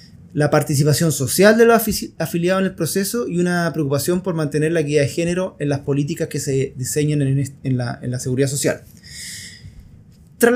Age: 20-39